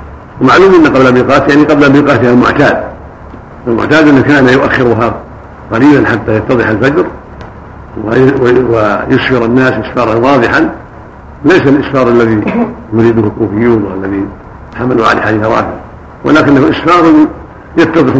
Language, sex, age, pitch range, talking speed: Arabic, male, 60-79, 110-130 Hz, 110 wpm